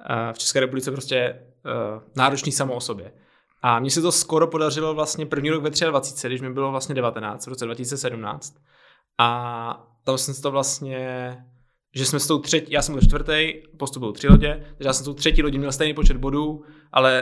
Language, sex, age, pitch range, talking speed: Czech, male, 20-39, 130-155 Hz, 200 wpm